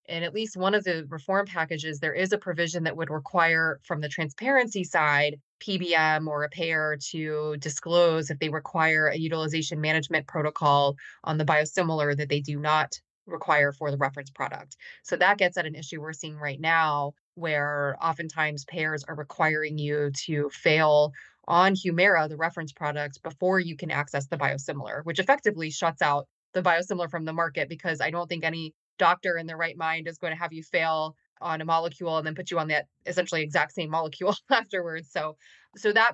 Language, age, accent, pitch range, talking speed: English, 20-39, American, 155-180 Hz, 190 wpm